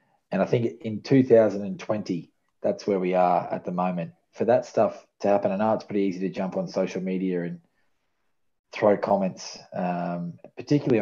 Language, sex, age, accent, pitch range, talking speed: English, male, 20-39, Australian, 90-100 Hz, 175 wpm